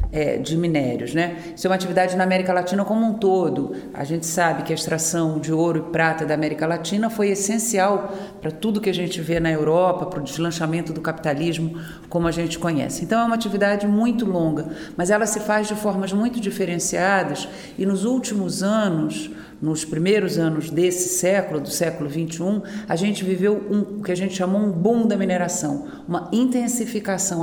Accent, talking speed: Brazilian, 185 wpm